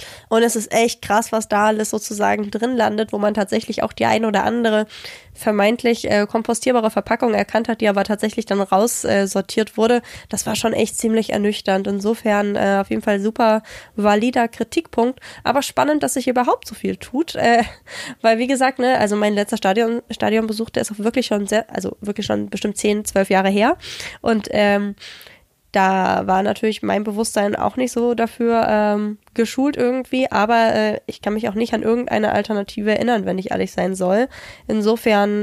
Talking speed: 185 wpm